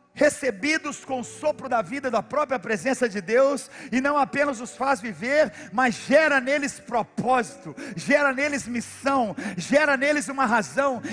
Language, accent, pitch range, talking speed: Portuguese, Brazilian, 205-280 Hz, 150 wpm